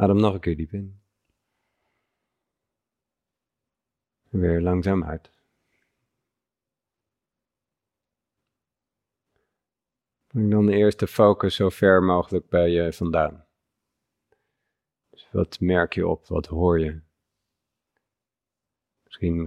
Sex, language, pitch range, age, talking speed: male, Dutch, 85-105 Hz, 50-69, 90 wpm